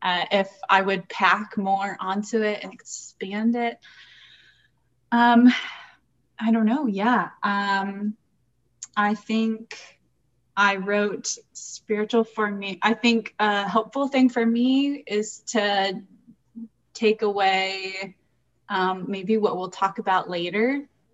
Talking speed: 120 wpm